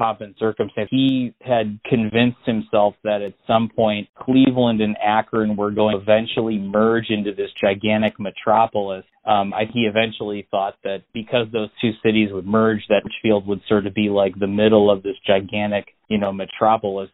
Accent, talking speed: American, 170 wpm